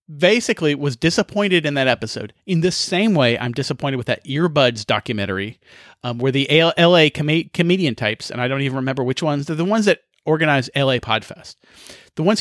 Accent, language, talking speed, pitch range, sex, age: American, English, 195 wpm, 130-175 Hz, male, 40-59